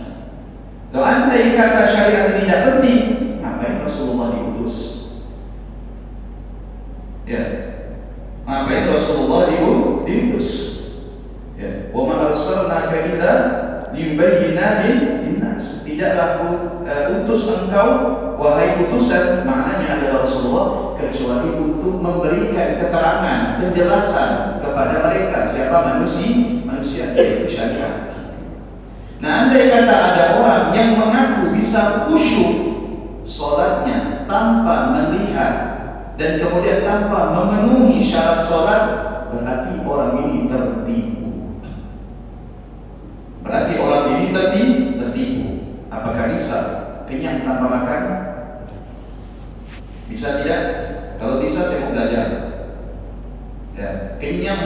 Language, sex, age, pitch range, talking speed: Indonesian, male, 40-59, 170-240 Hz, 90 wpm